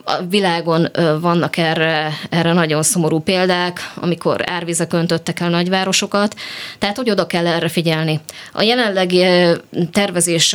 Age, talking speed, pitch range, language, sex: 20-39, 130 wpm, 160-180 Hz, Hungarian, female